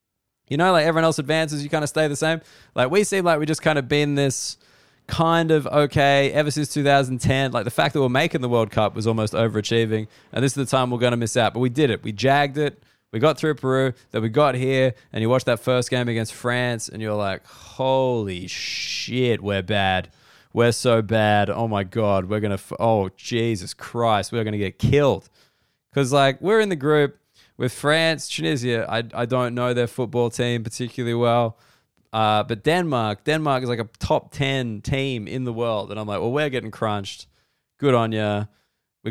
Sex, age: male, 20-39